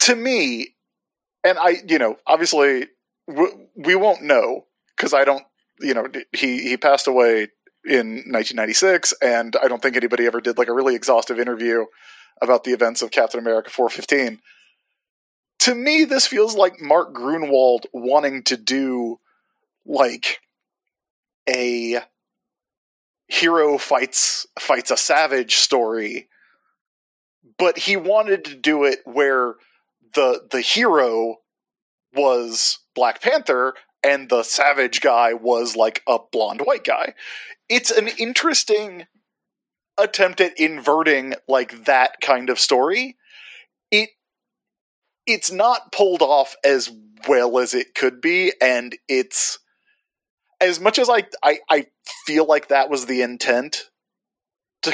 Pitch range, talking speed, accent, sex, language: 125-200 Hz, 130 wpm, American, male, English